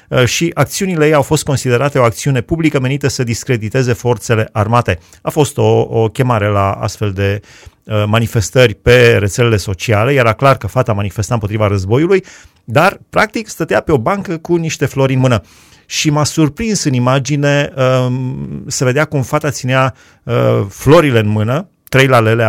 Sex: male